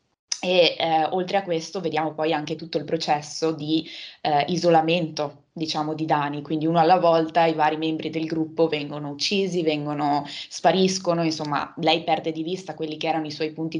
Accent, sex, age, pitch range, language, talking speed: native, female, 20-39, 150-165 Hz, Italian, 180 wpm